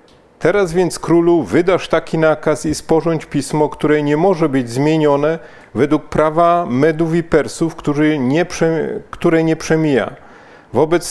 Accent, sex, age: native, male, 40-59